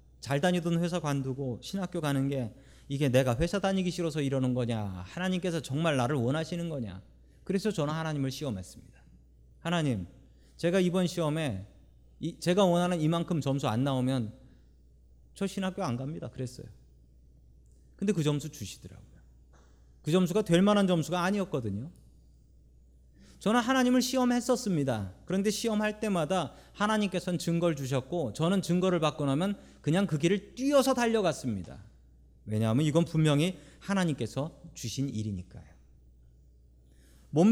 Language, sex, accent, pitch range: Korean, male, native, 110-180 Hz